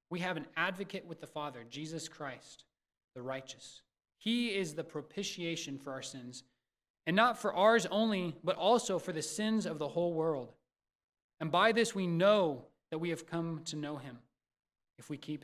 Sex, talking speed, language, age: male, 185 wpm, English, 20-39